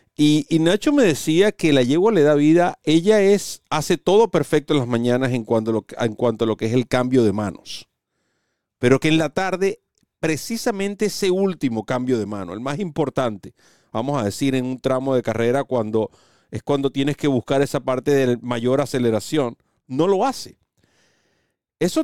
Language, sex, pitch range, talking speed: Spanish, male, 120-160 Hz, 190 wpm